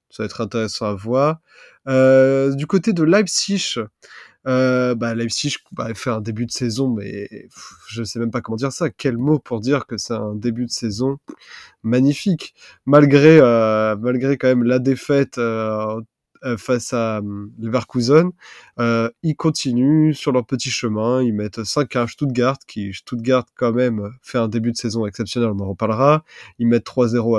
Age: 20-39